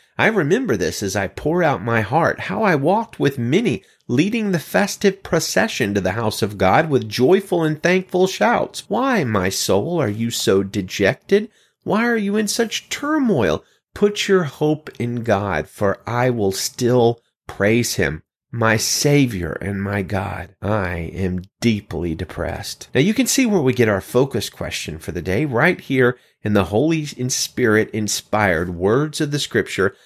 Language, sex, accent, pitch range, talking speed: English, male, American, 100-145 Hz, 170 wpm